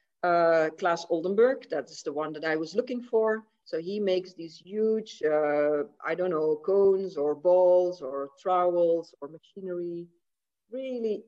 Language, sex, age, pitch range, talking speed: Dutch, female, 50-69, 165-225 Hz, 155 wpm